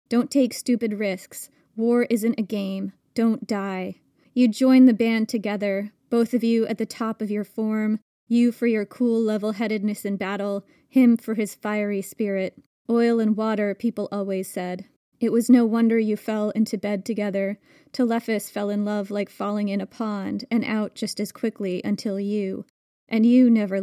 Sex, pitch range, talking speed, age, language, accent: female, 200-230 Hz, 175 wpm, 20-39, English, American